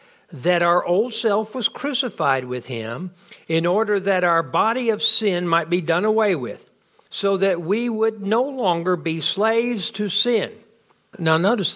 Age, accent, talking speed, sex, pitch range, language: 60-79, American, 165 wpm, male, 170-220 Hz, English